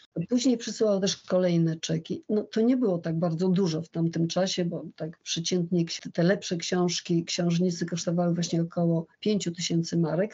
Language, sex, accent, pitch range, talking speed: Polish, female, native, 170-195 Hz, 165 wpm